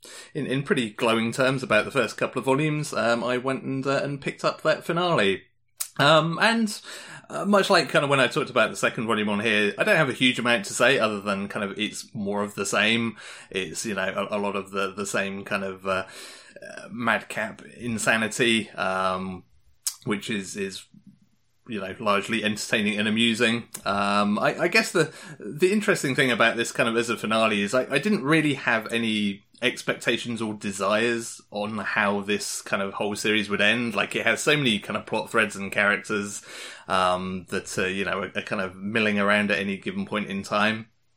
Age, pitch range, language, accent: 30-49, 100-130 Hz, English, British